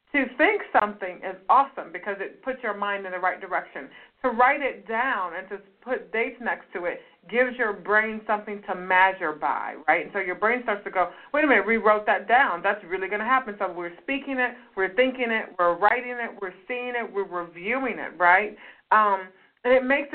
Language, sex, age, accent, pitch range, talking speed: English, female, 30-49, American, 195-250 Hz, 215 wpm